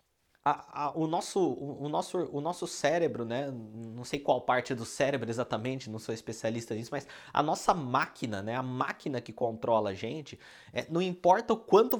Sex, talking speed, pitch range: male, 190 wpm, 120-165 Hz